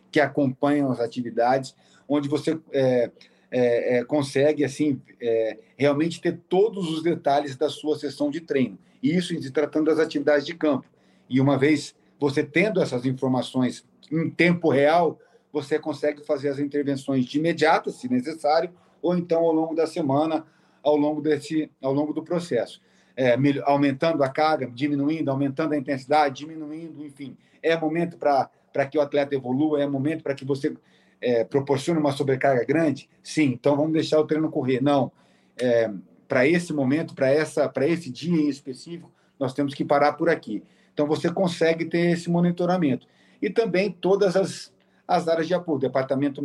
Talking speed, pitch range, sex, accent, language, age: 165 wpm, 135-160 Hz, male, Brazilian, Portuguese, 40-59